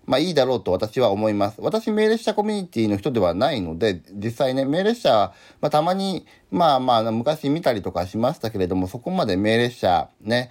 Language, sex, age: Japanese, male, 40-59